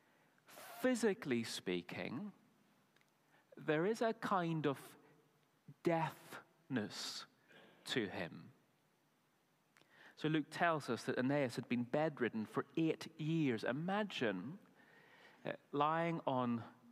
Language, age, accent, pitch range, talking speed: English, 40-59, British, 125-195 Hz, 90 wpm